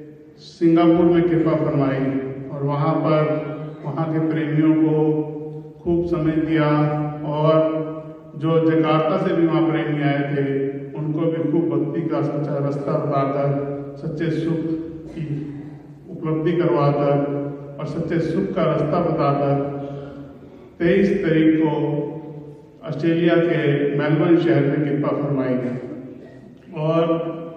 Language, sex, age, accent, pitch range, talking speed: Hindi, male, 50-69, native, 145-165 Hz, 115 wpm